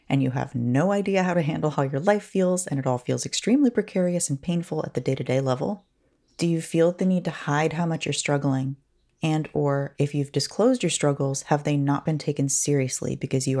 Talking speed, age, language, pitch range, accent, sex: 220 wpm, 30-49, English, 135-165 Hz, American, female